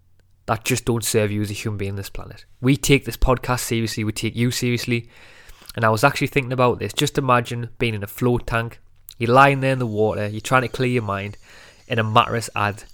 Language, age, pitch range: English, 20-39, 105-130 Hz